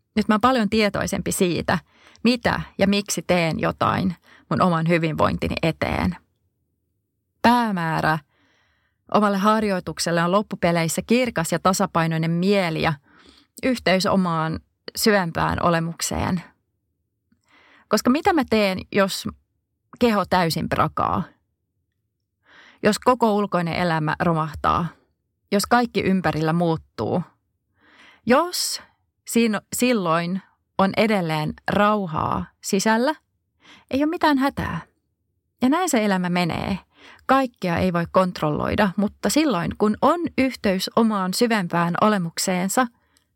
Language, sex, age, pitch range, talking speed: Finnish, female, 30-49, 160-215 Hz, 100 wpm